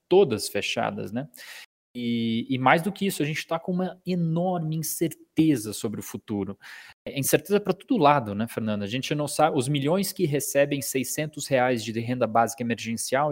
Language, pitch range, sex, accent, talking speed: Portuguese, 115-160 Hz, male, Brazilian, 180 wpm